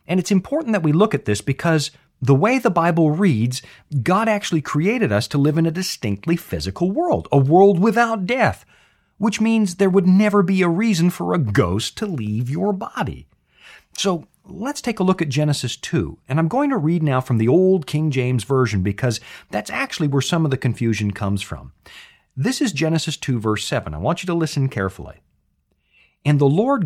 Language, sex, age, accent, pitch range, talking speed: English, male, 40-59, American, 115-190 Hz, 200 wpm